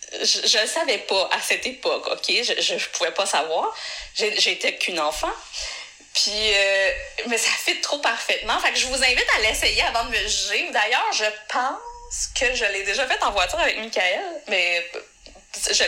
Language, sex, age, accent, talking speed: French, female, 20-39, Canadian, 190 wpm